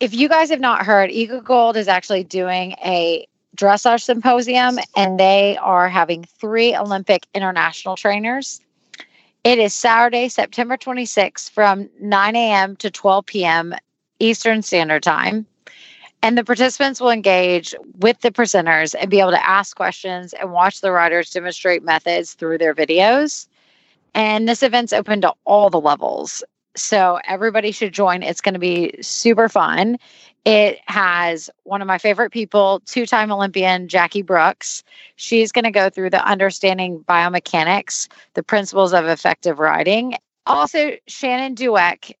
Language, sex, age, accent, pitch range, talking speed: English, female, 30-49, American, 185-230 Hz, 150 wpm